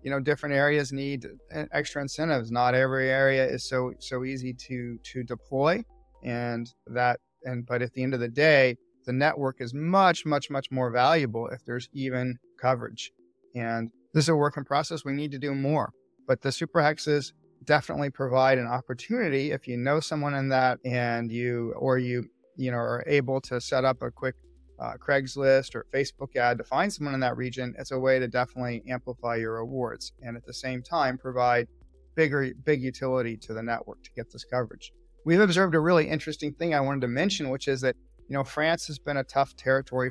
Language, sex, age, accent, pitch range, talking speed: English, male, 40-59, American, 125-140 Hz, 200 wpm